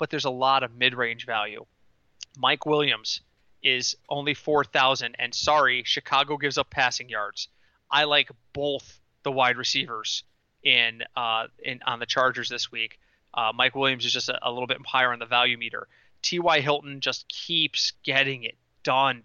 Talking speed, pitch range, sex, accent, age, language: 170 wpm, 130-165 Hz, male, American, 30-49, English